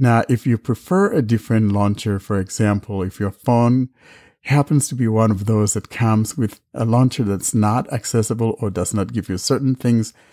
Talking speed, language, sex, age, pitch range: 190 wpm, English, male, 60-79, 105-125 Hz